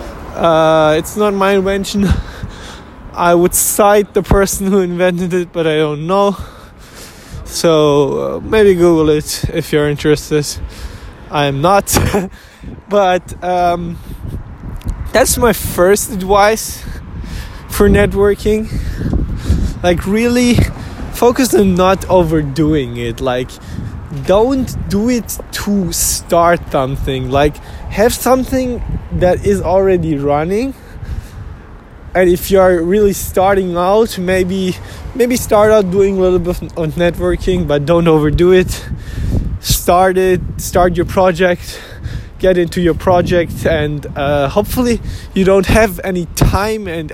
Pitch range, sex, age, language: 145-195 Hz, male, 20-39, English